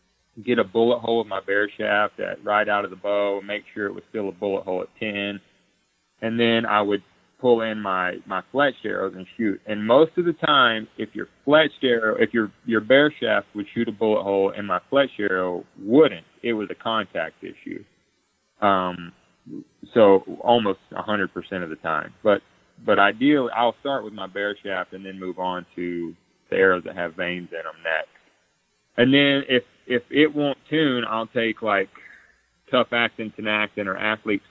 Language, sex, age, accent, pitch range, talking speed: English, male, 30-49, American, 95-115 Hz, 190 wpm